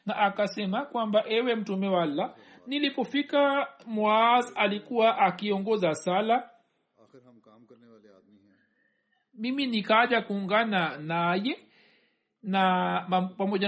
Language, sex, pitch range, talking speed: Swahili, male, 180-235 Hz, 70 wpm